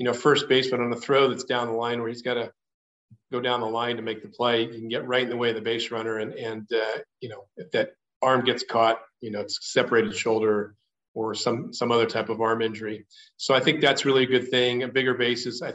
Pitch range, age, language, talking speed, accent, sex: 120-140 Hz, 40-59, English, 265 wpm, American, male